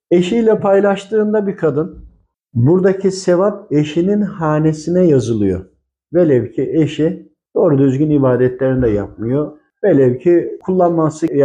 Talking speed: 105 wpm